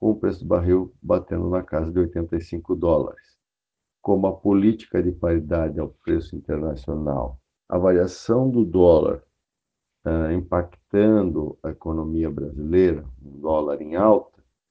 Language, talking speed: Portuguese, 125 wpm